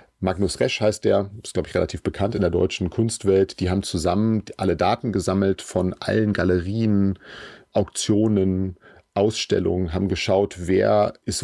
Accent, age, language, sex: German, 40-59, German, male